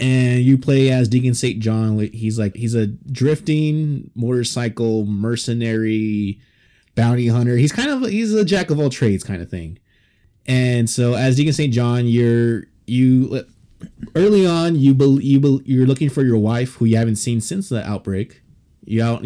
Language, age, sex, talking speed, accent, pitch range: English, 20-39, male, 175 wpm, American, 110-130 Hz